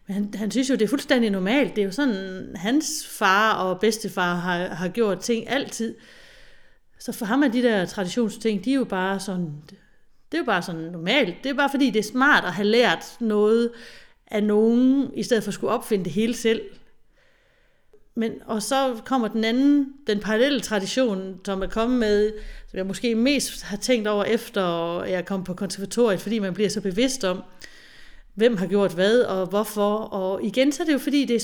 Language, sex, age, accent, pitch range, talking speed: Danish, female, 30-49, native, 195-245 Hz, 205 wpm